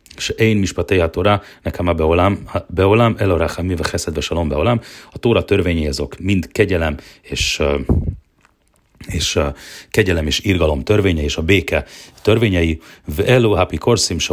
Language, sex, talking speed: Hungarian, male, 120 wpm